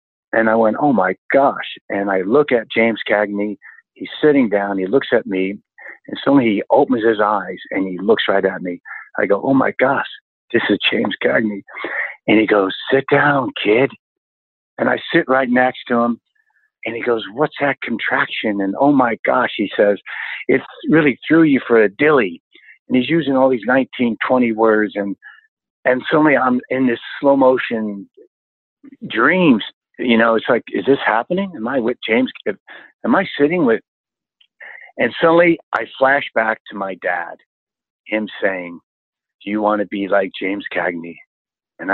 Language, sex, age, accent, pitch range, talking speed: English, male, 50-69, American, 100-130 Hz, 175 wpm